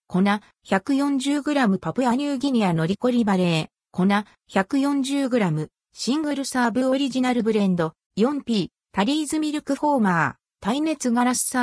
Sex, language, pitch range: female, Japanese, 185-270 Hz